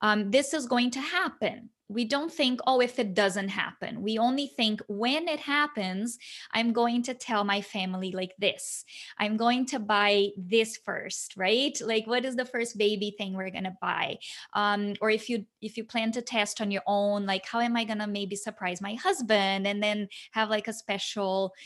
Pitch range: 205-245 Hz